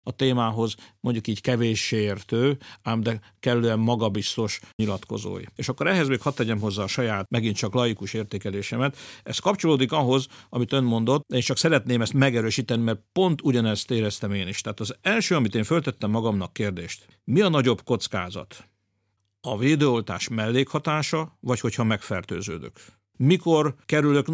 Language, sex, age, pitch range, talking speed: Hungarian, male, 50-69, 110-130 Hz, 150 wpm